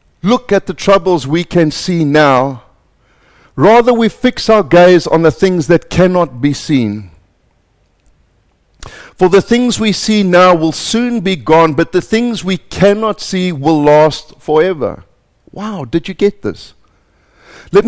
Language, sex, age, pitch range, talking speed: English, male, 50-69, 150-200 Hz, 150 wpm